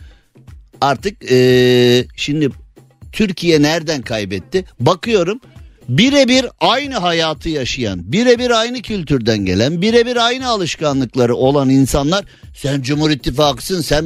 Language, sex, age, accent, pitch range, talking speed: Turkish, male, 50-69, native, 130-190 Hz, 100 wpm